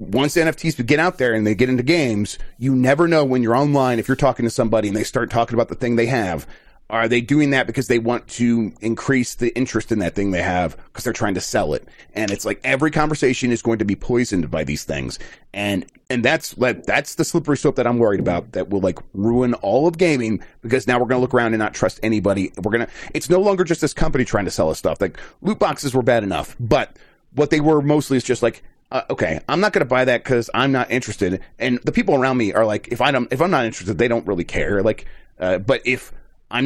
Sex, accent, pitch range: male, American, 110-135 Hz